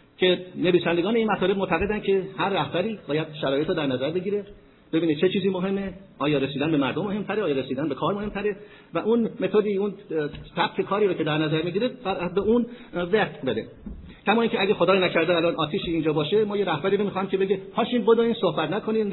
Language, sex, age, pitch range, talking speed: Persian, male, 50-69, 155-215 Hz, 190 wpm